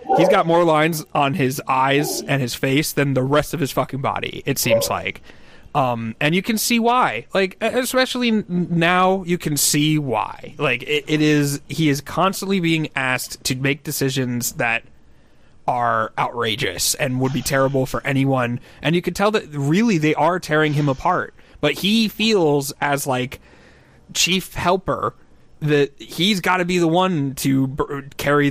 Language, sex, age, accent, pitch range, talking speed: English, male, 30-49, American, 130-170 Hz, 175 wpm